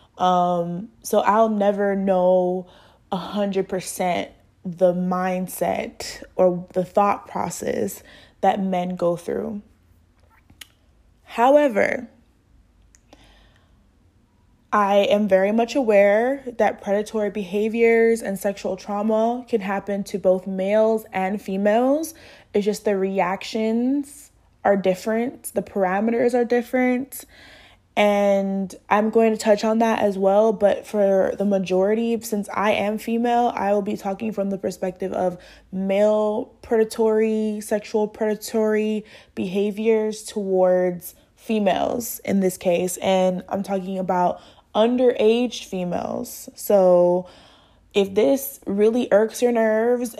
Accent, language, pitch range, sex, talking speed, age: American, English, 185-220 Hz, female, 115 wpm, 20-39